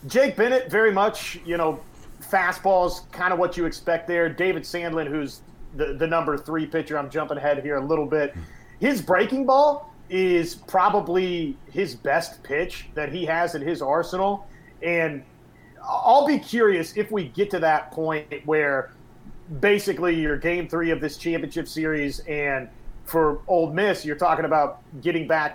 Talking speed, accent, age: 165 wpm, American, 30-49